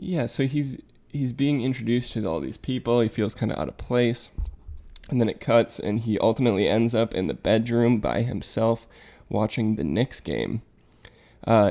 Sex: male